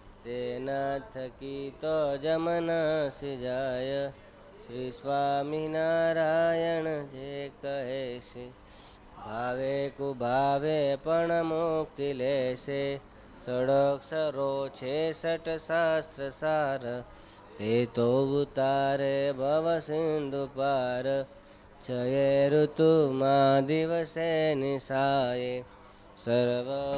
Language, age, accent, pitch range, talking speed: Gujarati, 20-39, native, 125-155 Hz, 70 wpm